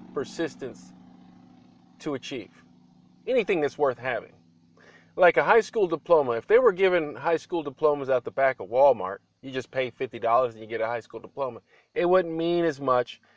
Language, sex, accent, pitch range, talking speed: English, male, American, 125-145 Hz, 180 wpm